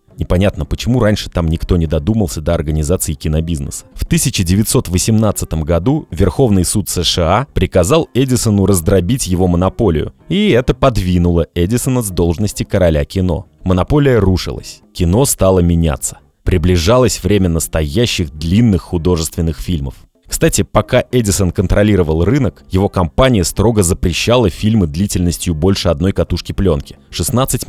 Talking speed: 120 wpm